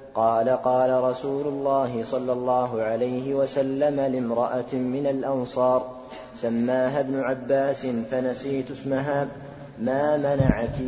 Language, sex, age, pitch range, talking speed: Arabic, male, 30-49, 125-140 Hz, 100 wpm